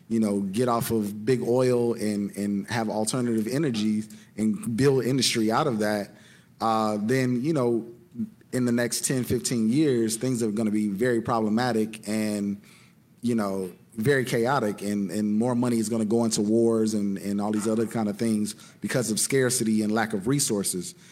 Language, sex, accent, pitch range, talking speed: English, male, American, 105-120 Hz, 180 wpm